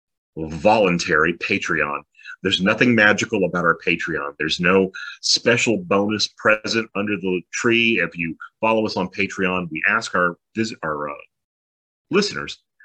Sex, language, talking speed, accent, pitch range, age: male, English, 130 wpm, American, 80-110 Hz, 40-59